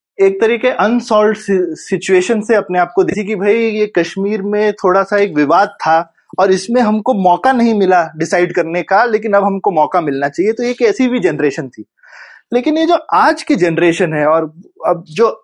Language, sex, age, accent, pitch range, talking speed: Hindi, male, 20-39, native, 165-230 Hz, 185 wpm